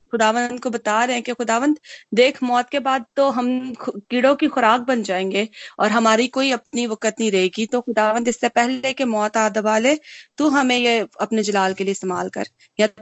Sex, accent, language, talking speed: female, native, Hindi, 200 wpm